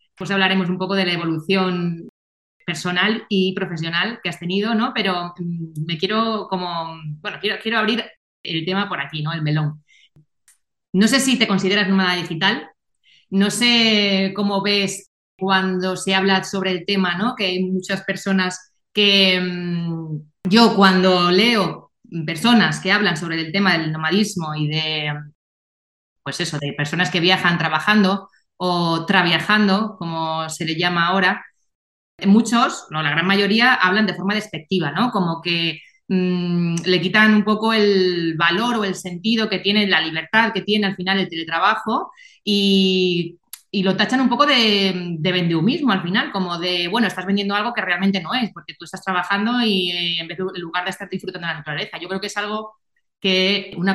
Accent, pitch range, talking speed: Spanish, 170-205 Hz, 170 wpm